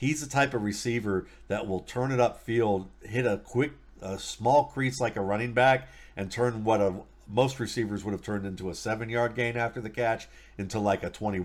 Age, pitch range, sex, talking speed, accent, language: 50-69, 100-125 Hz, male, 225 wpm, American, English